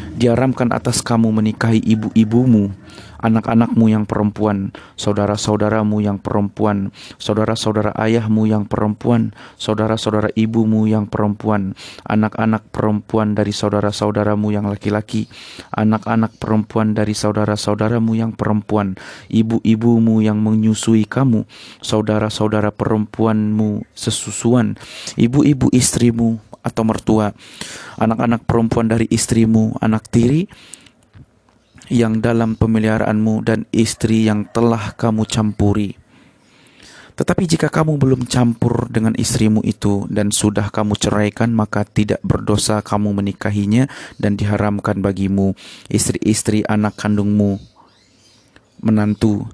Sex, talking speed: male, 100 wpm